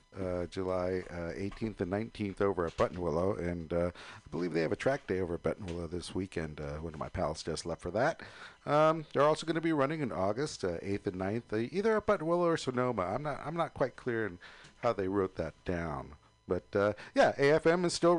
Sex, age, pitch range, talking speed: male, 50-69, 95-140 Hz, 230 wpm